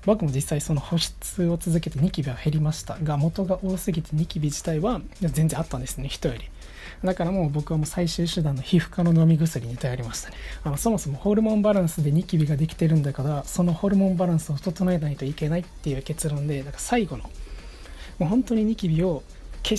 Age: 20-39